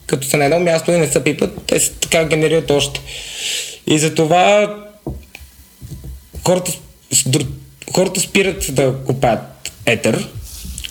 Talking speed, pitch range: 120 wpm, 120-165 Hz